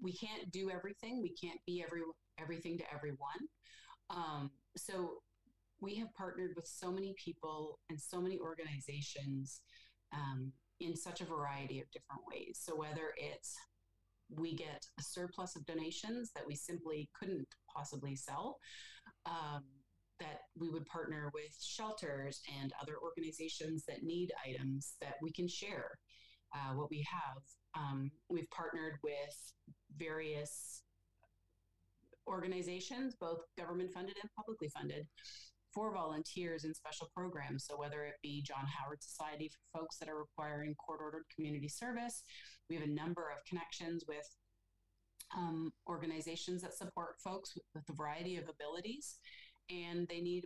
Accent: American